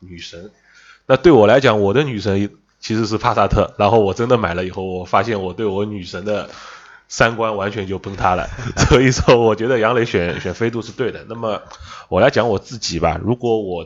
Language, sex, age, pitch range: Chinese, male, 20-39, 90-110 Hz